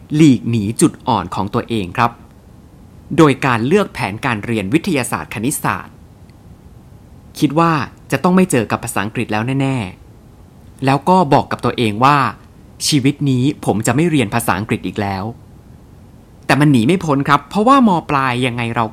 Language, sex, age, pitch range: Thai, male, 20-39, 110-160 Hz